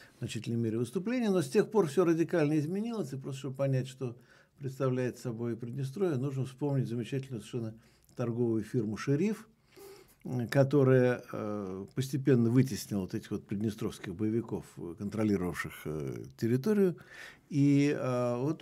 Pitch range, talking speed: 115-155 Hz, 120 wpm